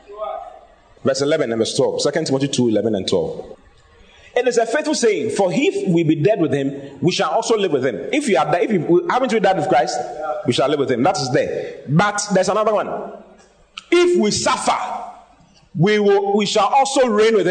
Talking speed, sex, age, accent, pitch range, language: 215 wpm, male, 30-49, Nigerian, 155-255 Hz, English